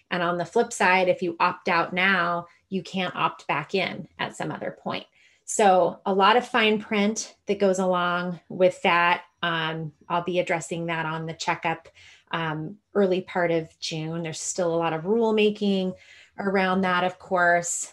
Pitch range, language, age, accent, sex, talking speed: 170-200 Hz, English, 30-49, American, female, 175 wpm